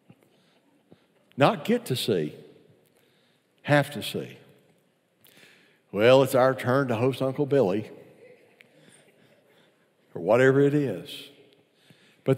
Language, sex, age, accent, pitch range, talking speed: English, male, 60-79, American, 105-130 Hz, 95 wpm